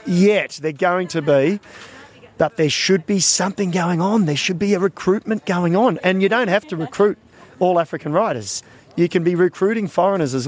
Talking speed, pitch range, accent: 195 wpm, 140-185 Hz, Australian